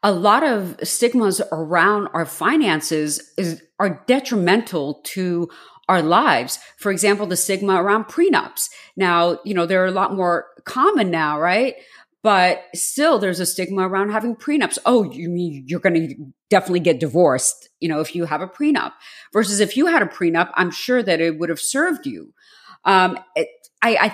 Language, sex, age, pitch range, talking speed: English, female, 40-59, 180-255 Hz, 180 wpm